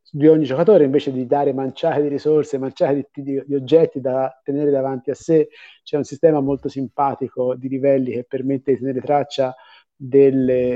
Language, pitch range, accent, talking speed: Italian, 140-185 Hz, native, 175 wpm